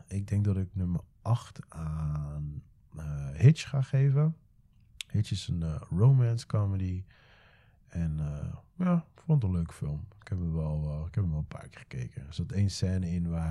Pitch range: 85-125 Hz